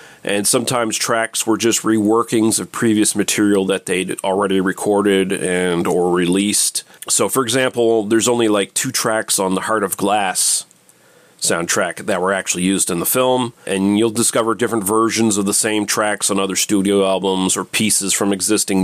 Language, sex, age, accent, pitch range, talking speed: English, male, 40-59, American, 100-120 Hz, 170 wpm